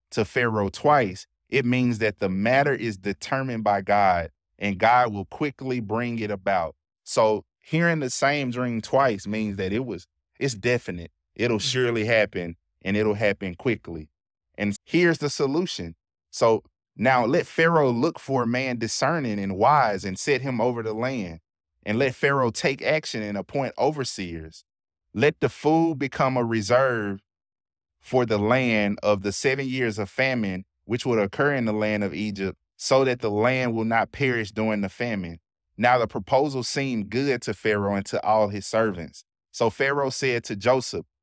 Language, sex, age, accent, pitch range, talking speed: English, male, 20-39, American, 95-130 Hz, 170 wpm